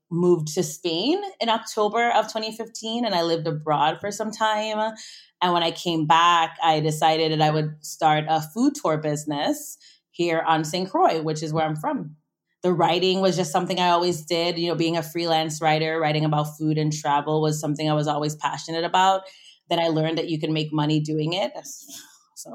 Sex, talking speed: female, 200 wpm